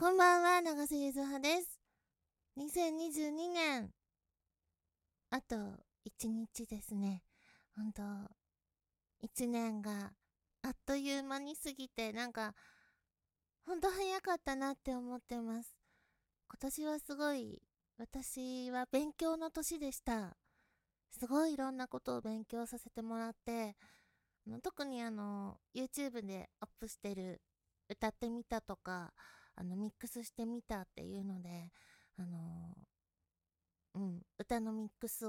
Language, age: Japanese, 20-39